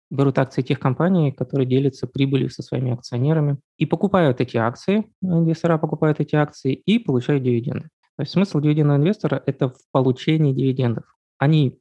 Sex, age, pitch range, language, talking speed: male, 20-39, 130-150 Hz, Russian, 165 wpm